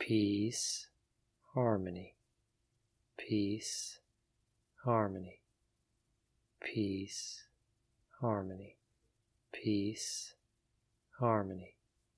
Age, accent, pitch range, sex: 40-59, American, 100-115 Hz, male